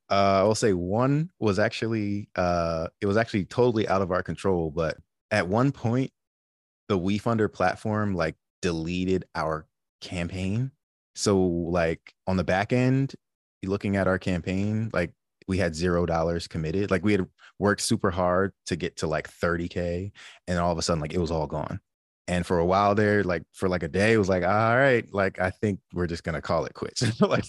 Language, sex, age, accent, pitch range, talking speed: English, male, 20-39, American, 85-105 Hz, 195 wpm